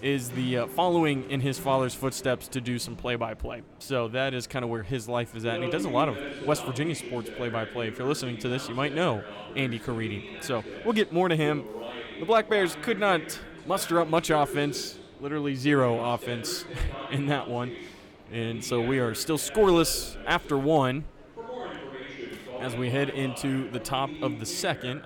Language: English